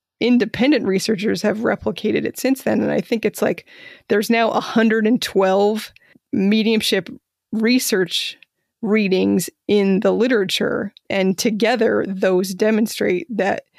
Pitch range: 200-240 Hz